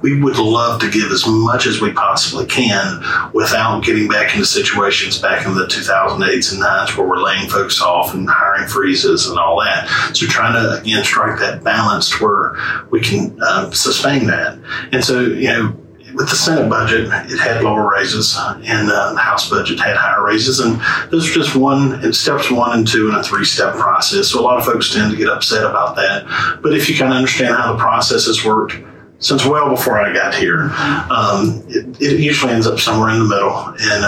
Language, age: English, 40-59